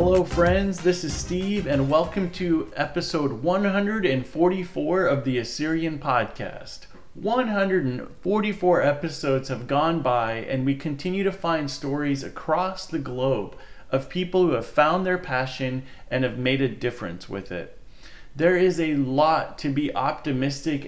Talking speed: 140 wpm